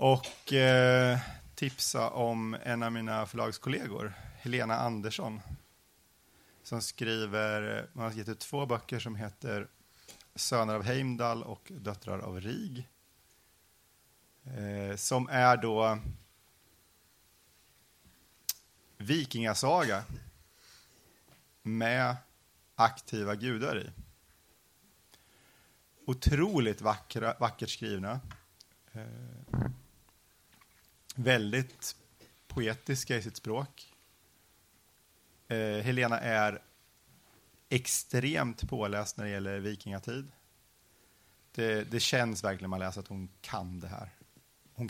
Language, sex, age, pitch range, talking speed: Swedish, male, 30-49, 95-120 Hz, 80 wpm